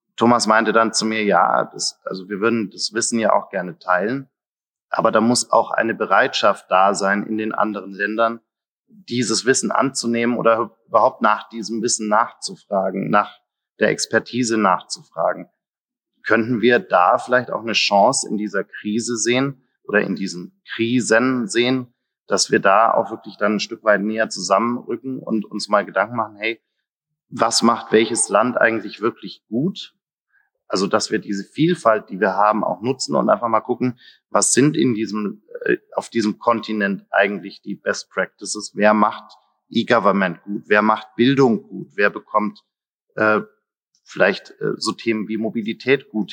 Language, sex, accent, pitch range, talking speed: German, male, German, 105-120 Hz, 160 wpm